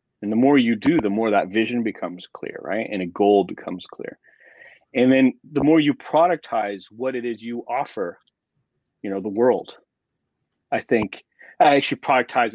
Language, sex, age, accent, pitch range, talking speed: English, male, 30-49, American, 110-160 Hz, 170 wpm